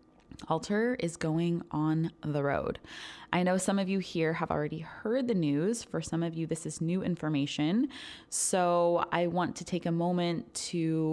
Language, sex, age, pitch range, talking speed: English, female, 20-39, 155-185 Hz, 180 wpm